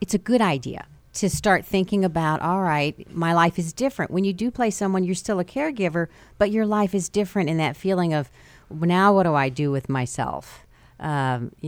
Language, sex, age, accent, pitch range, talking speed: English, female, 50-69, American, 145-185 Hz, 205 wpm